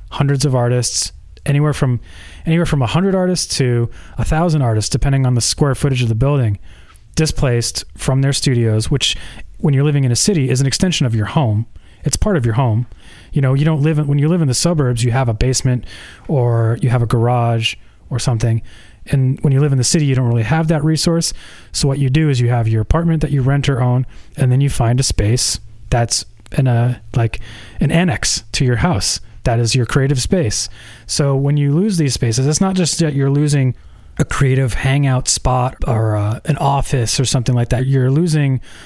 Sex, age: male, 30-49